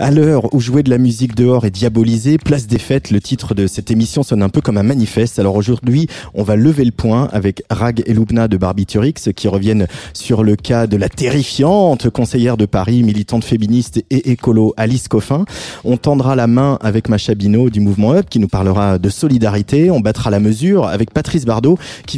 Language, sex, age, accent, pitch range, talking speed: French, male, 30-49, French, 105-135 Hz, 205 wpm